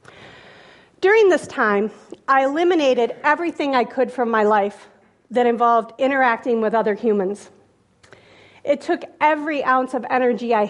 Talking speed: 135 wpm